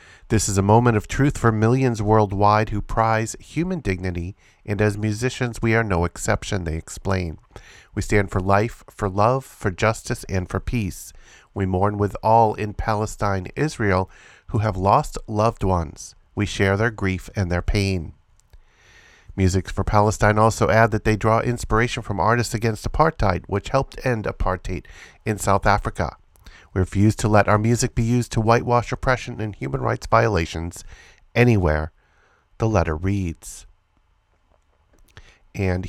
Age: 40-59